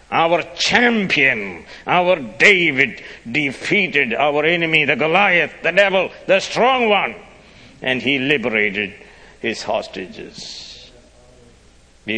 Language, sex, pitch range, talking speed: English, male, 95-135 Hz, 100 wpm